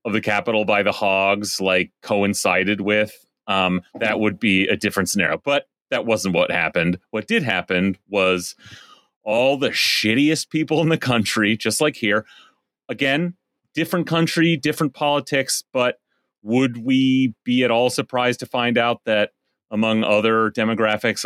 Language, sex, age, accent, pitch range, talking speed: English, male, 30-49, American, 110-140 Hz, 150 wpm